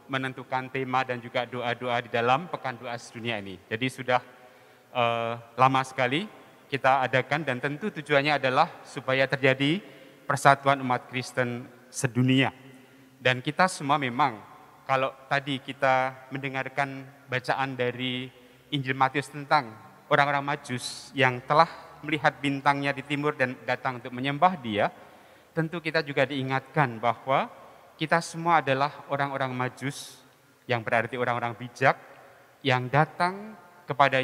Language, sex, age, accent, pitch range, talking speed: Indonesian, male, 30-49, native, 125-145 Hz, 125 wpm